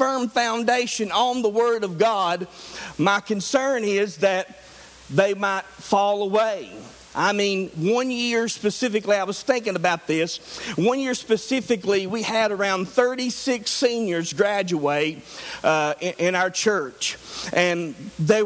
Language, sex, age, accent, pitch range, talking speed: English, male, 50-69, American, 185-240 Hz, 135 wpm